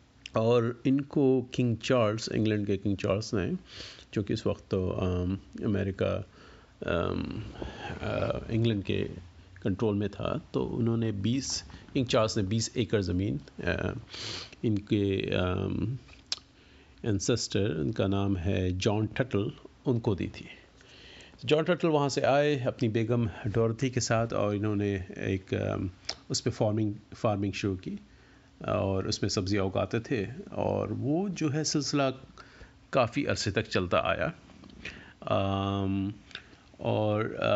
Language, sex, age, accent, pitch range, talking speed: Hindi, male, 50-69, native, 100-125 Hz, 115 wpm